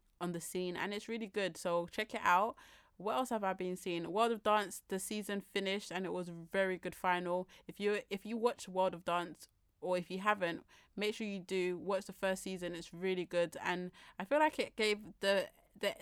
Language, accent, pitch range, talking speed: English, British, 175-205 Hz, 230 wpm